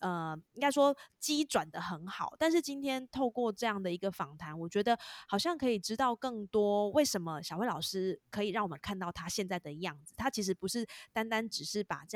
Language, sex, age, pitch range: Chinese, female, 20-39, 175-225 Hz